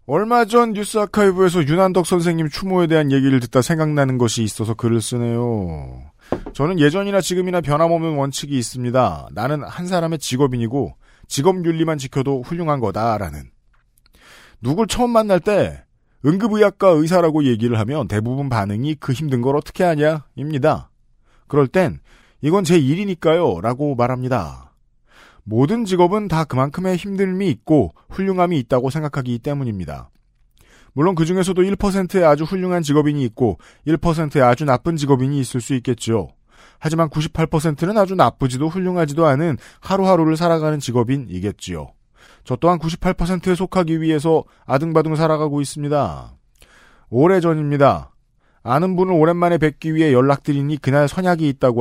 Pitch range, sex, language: 130-175 Hz, male, Korean